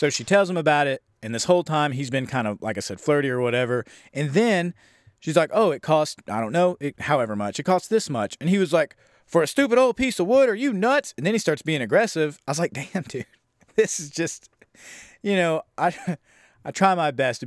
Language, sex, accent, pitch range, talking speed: English, male, American, 115-155 Hz, 250 wpm